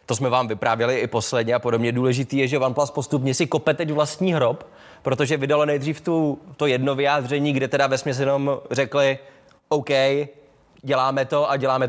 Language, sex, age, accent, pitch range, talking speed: Czech, male, 20-39, native, 125-150 Hz, 180 wpm